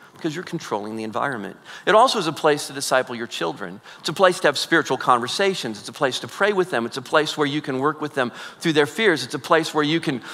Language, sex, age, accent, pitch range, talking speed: English, male, 40-59, American, 125-155 Hz, 265 wpm